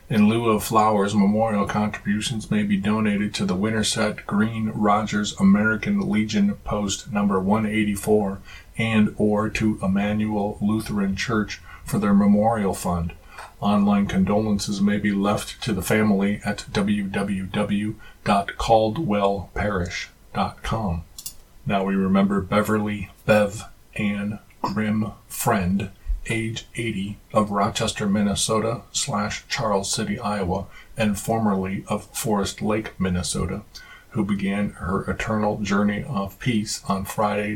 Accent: American